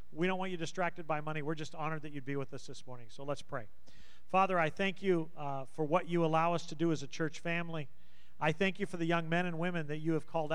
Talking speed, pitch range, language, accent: 280 wpm, 150-175 Hz, English, American